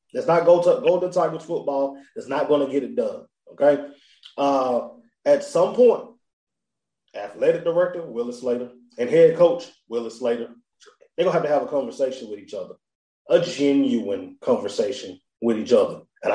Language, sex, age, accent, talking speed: English, male, 20-39, American, 175 wpm